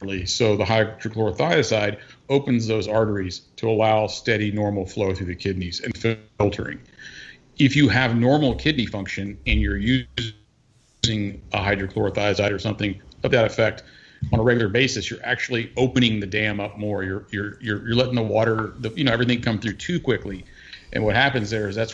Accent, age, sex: American, 50-69, male